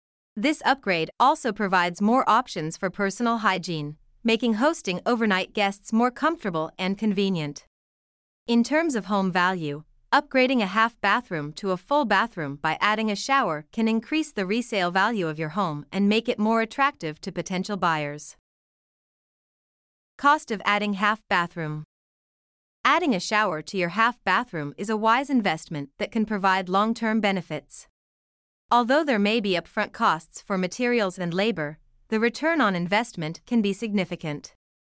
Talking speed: 145 wpm